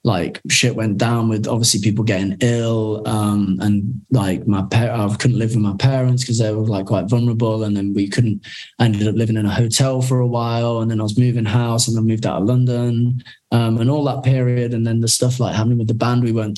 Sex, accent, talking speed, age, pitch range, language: male, British, 245 wpm, 20-39, 110-120 Hz, English